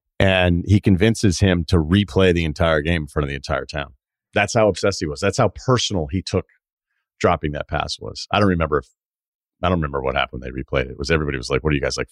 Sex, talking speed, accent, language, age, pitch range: male, 260 wpm, American, English, 40-59, 80-115 Hz